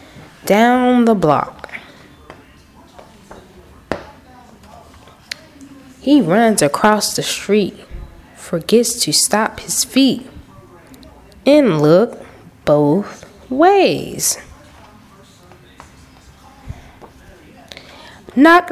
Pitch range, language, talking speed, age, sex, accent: 195-290 Hz, English, 60 wpm, 20-39, female, American